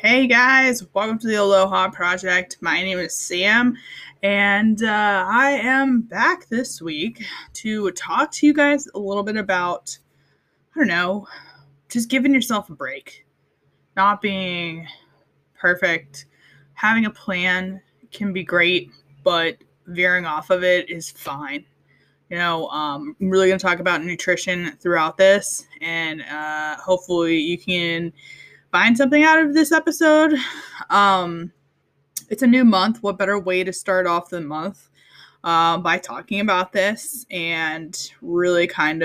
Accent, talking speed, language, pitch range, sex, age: American, 145 wpm, English, 165-210 Hz, female, 20-39